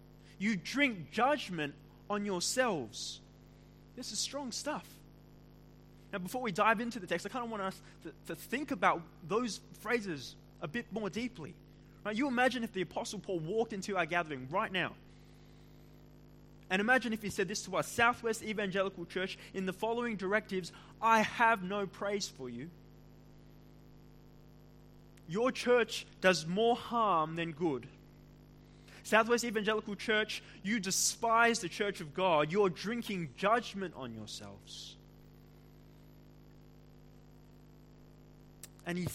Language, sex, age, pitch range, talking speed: English, male, 20-39, 160-235 Hz, 135 wpm